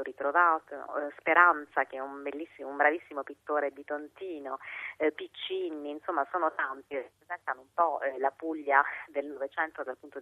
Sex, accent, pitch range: female, native, 140-175 Hz